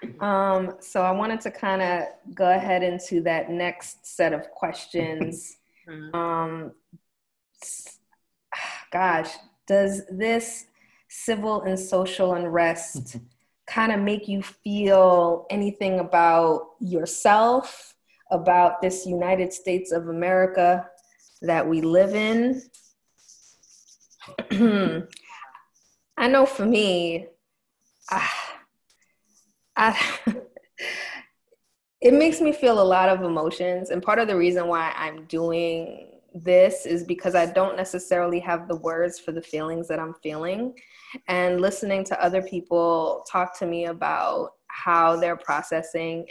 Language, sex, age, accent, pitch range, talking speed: English, female, 20-39, American, 170-205 Hz, 115 wpm